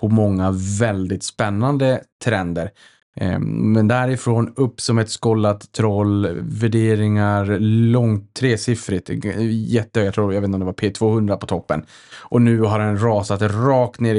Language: Swedish